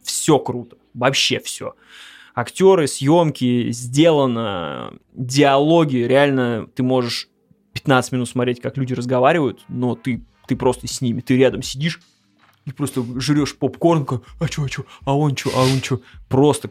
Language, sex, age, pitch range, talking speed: Russian, male, 20-39, 125-150 Hz, 145 wpm